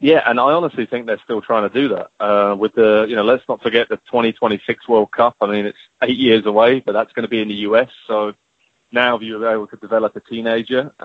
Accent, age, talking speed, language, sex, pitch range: British, 20-39, 255 wpm, English, male, 110-125 Hz